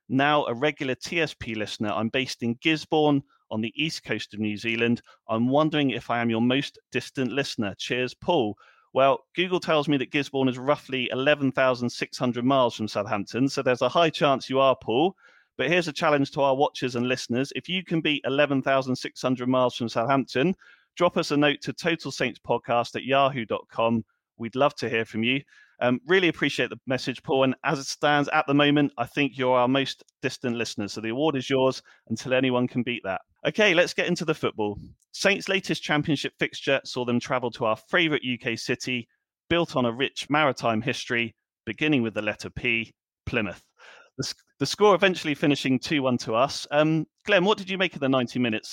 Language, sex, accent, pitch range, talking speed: English, male, British, 120-150 Hz, 195 wpm